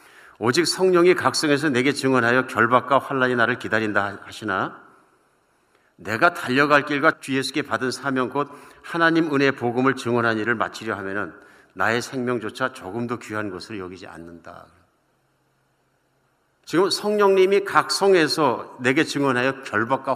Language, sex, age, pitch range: Korean, male, 50-69, 125-175 Hz